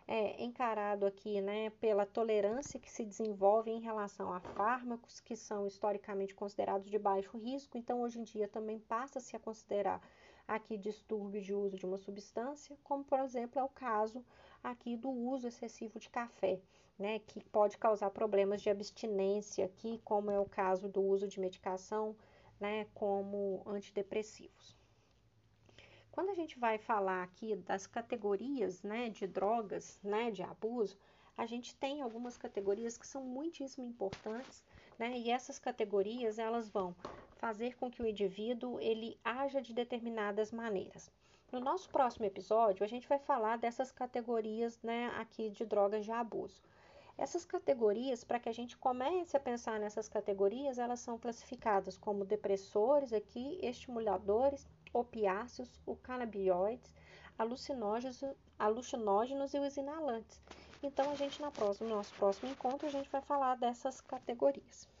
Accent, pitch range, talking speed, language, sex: Brazilian, 200-245 Hz, 145 wpm, Portuguese, female